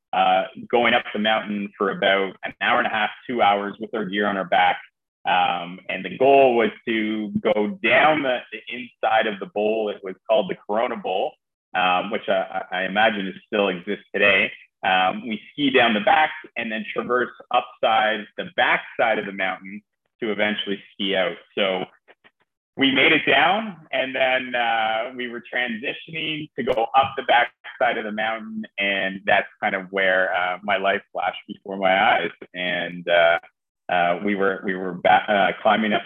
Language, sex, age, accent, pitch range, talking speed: English, male, 30-49, American, 90-110 Hz, 185 wpm